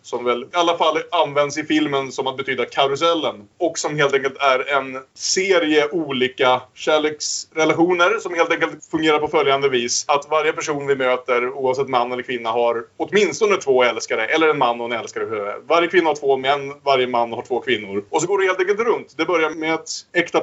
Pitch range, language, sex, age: 125-175 Hz, Swedish, male, 30-49